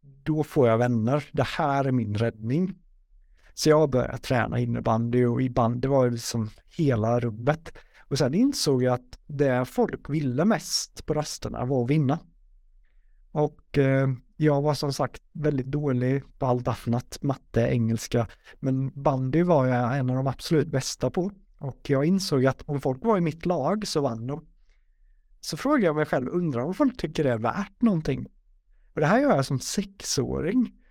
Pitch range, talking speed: 130-180 Hz, 180 wpm